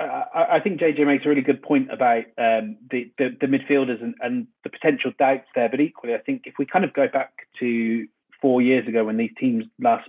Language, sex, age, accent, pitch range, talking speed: English, male, 30-49, British, 115-160 Hz, 230 wpm